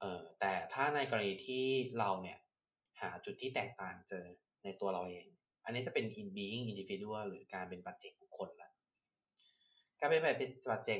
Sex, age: male, 20-39